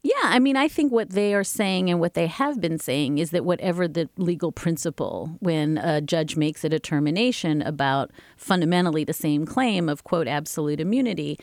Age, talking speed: 40-59, 190 wpm